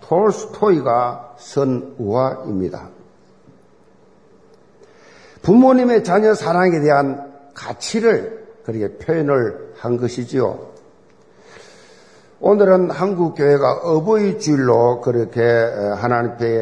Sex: male